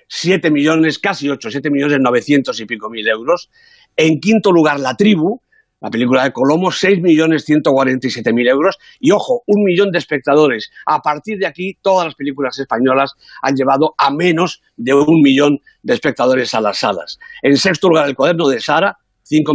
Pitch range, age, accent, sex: 130-175 Hz, 50-69, Spanish, male